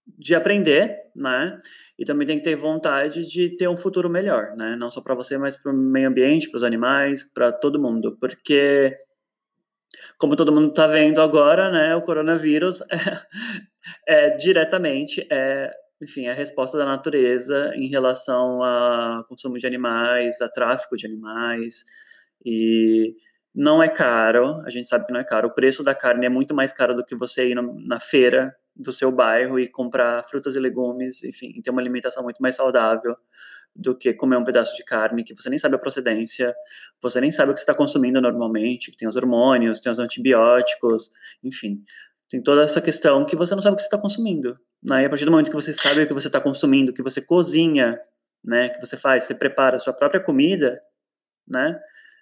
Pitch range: 125-170 Hz